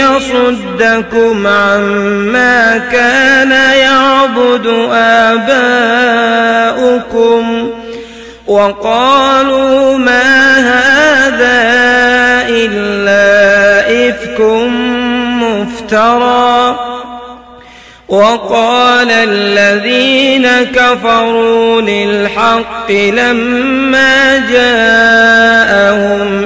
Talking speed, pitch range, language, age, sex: 40 wpm, 225-245 Hz, Arabic, 30-49, male